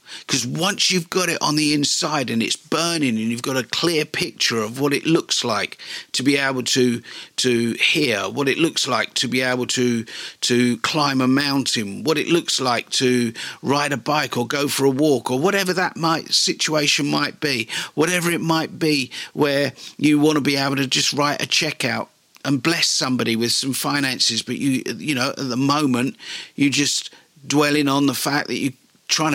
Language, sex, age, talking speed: English, male, 50-69, 200 wpm